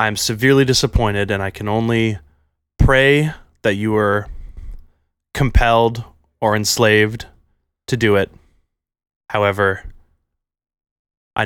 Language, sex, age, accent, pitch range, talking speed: English, male, 20-39, American, 90-115 Hz, 105 wpm